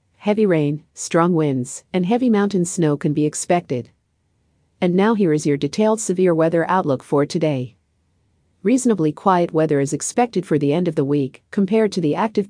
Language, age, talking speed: English, 50-69, 180 wpm